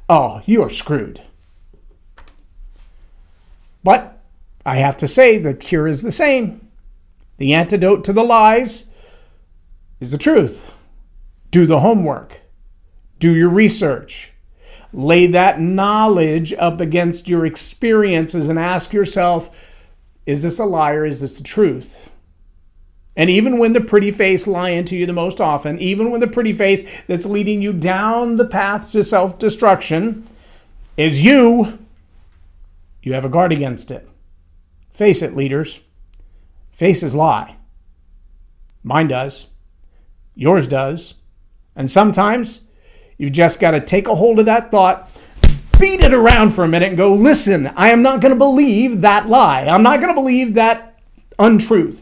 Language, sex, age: English, male, 50-69